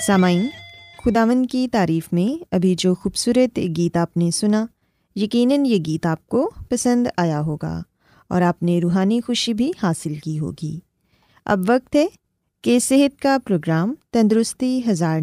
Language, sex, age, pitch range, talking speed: Urdu, female, 20-39, 180-255 Hz, 150 wpm